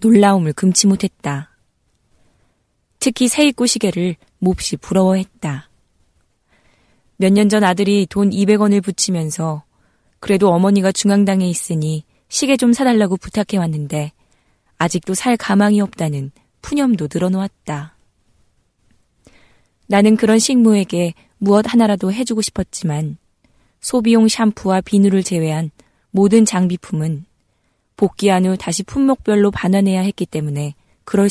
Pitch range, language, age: 165-210 Hz, Korean, 20-39